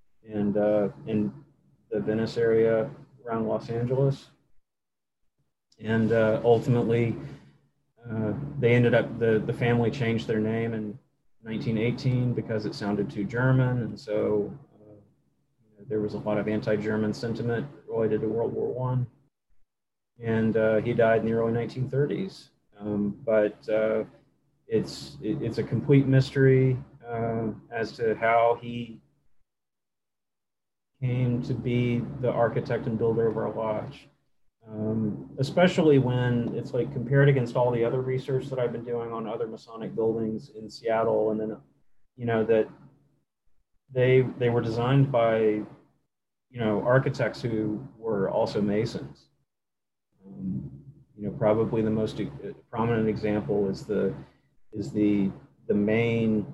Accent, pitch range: American, 110-120 Hz